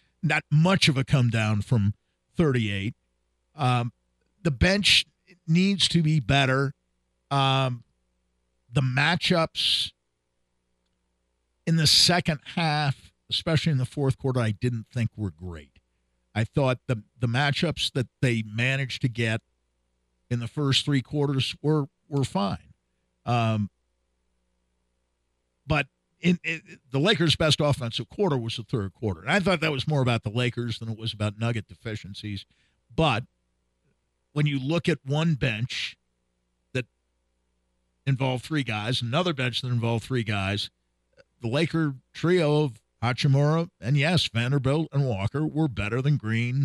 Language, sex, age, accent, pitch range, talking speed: English, male, 50-69, American, 90-145 Hz, 140 wpm